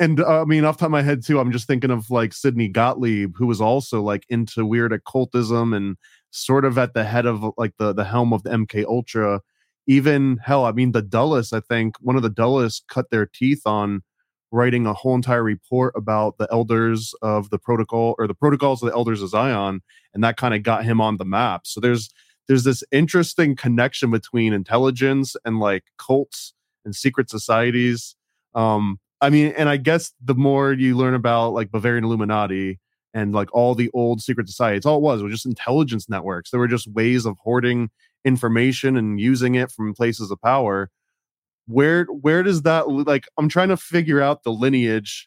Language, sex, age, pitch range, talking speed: English, male, 20-39, 110-135 Hz, 200 wpm